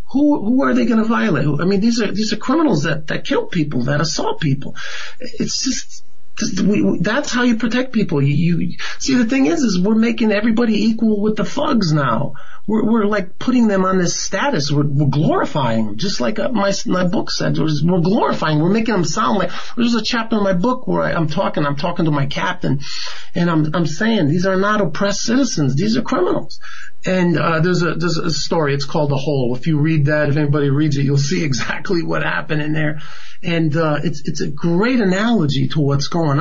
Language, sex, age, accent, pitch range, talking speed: English, male, 40-59, American, 145-210 Hz, 220 wpm